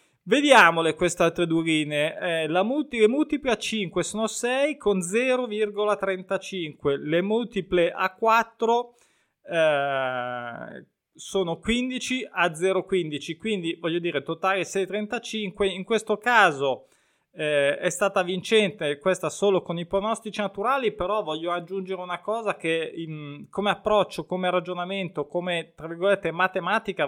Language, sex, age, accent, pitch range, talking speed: Italian, male, 20-39, native, 165-210 Hz, 125 wpm